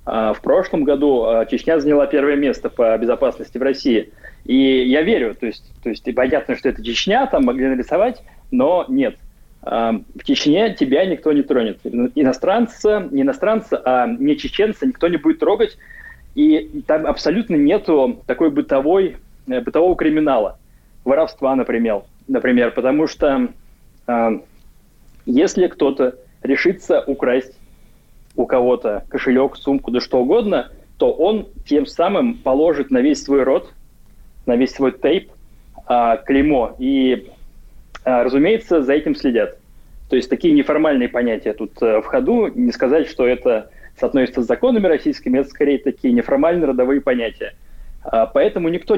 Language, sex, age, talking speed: Russian, male, 20-39, 135 wpm